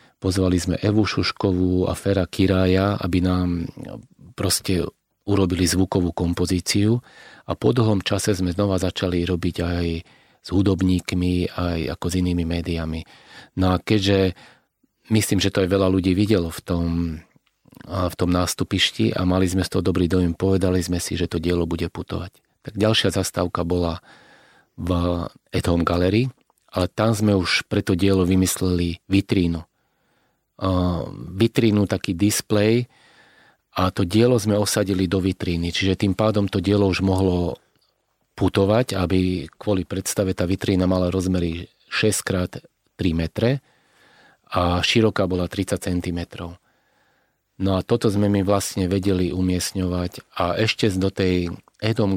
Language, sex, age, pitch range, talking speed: Slovak, male, 40-59, 90-100 Hz, 140 wpm